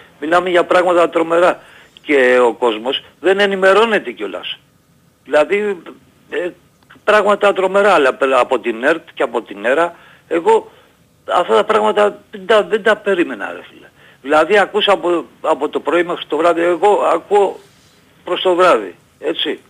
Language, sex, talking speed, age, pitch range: Greek, male, 135 wpm, 50-69, 145-200 Hz